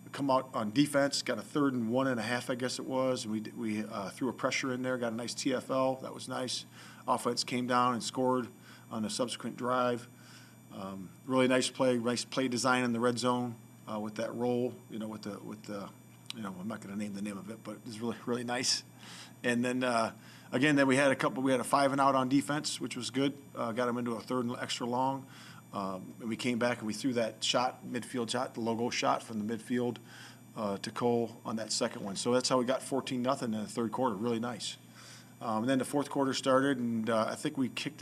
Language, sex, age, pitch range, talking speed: English, male, 40-59, 115-130 Hz, 250 wpm